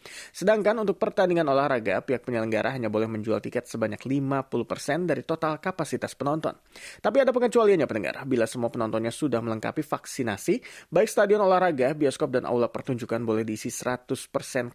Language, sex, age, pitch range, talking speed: English, male, 30-49, 120-170 Hz, 145 wpm